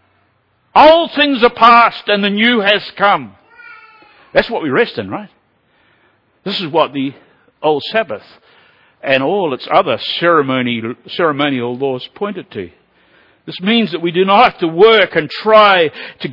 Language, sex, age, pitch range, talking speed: English, male, 60-79, 135-200 Hz, 150 wpm